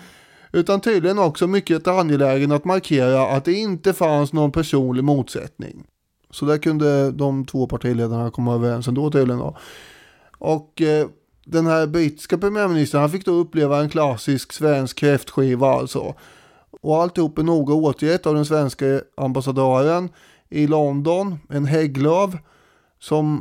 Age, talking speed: 20-39, 140 wpm